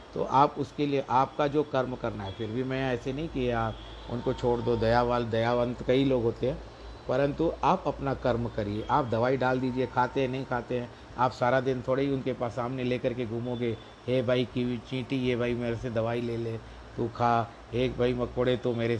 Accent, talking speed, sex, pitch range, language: native, 220 wpm, male, 120-135 Hz, Hindi